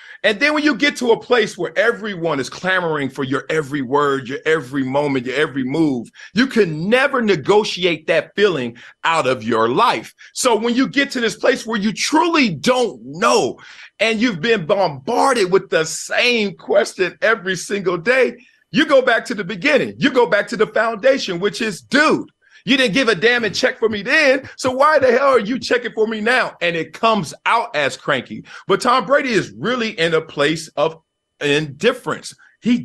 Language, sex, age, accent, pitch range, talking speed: English, male, 40-59, American, 160-250 Hz, 195 wpm